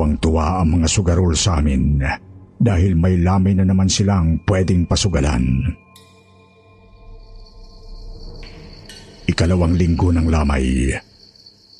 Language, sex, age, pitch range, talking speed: Filipino, male, 50-69, 80-100 Hz, 95 wpm